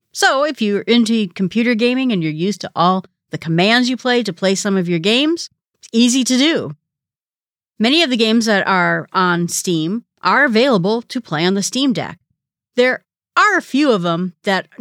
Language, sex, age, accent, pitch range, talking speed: English, female, 40-59, American, 165-230 Hz, 195 wpm